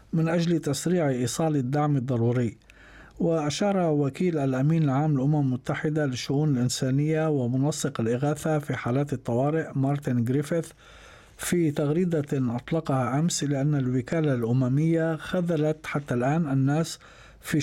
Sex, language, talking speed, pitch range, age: male, Arabic, 110 wpm, 130-160 Hz, 50-69